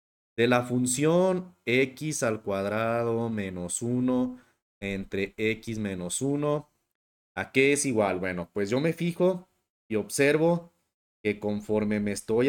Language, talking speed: English, 130 wpm